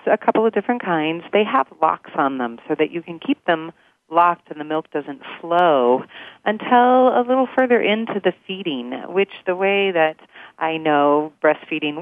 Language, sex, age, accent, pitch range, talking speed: English, female, 40-59, American, 150-195 Hz, 180 wpm